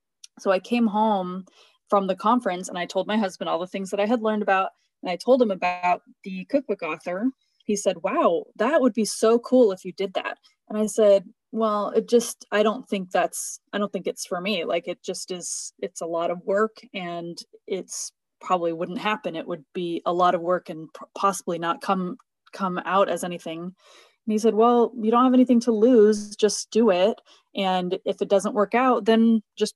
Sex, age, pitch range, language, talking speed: female, 20-39, 180-220 Hz, English, 215 wpm